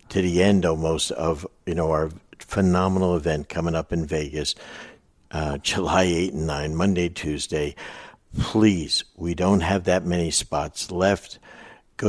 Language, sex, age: English, male, 60-79